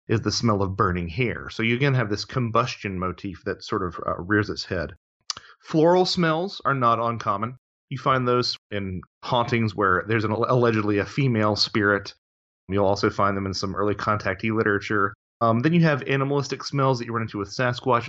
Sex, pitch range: male, 100-130 Hz